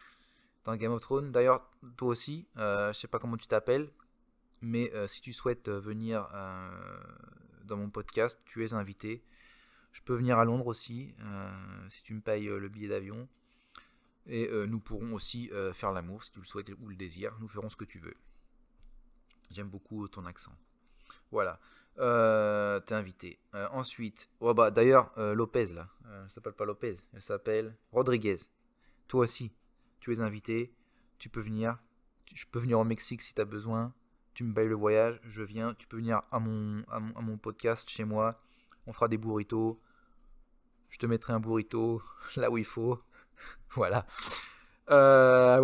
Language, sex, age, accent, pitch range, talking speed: French, male, 20-39, French, 110-135 Hz, 185 wpm